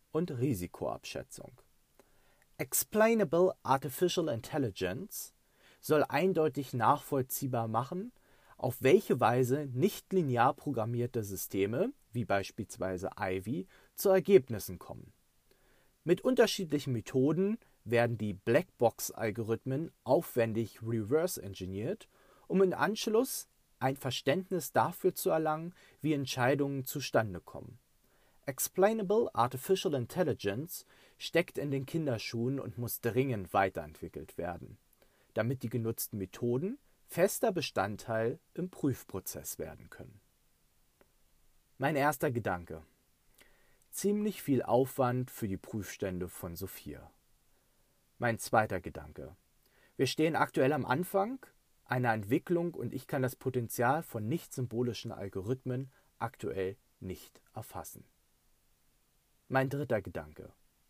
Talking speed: 95 wpm